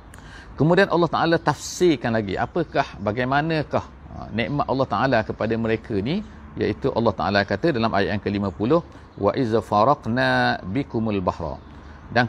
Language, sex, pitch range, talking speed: English, male, 105-130 Hz, 135 wpm